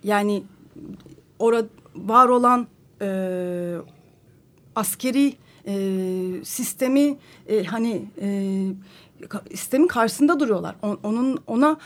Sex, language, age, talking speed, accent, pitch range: female, Turkish, 40-59, 80 wpm, native, 215-305 Hz